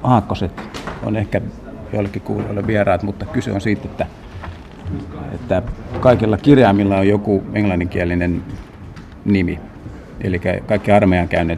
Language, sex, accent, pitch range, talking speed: Finnish, male, native, 95-105 Hz, 110 wpm